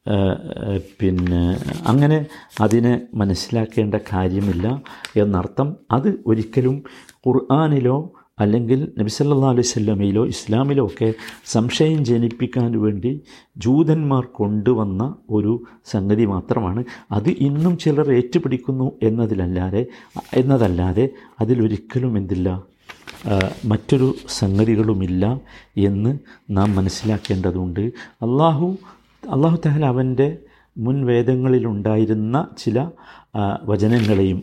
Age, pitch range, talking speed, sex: 50-69, 105-135 Hz, 75 wpm, male